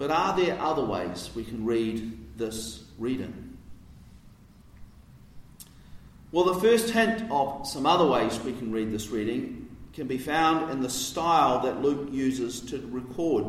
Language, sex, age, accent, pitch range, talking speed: English, male, 40-59, Australian, 125-170 Hz, 150 wpm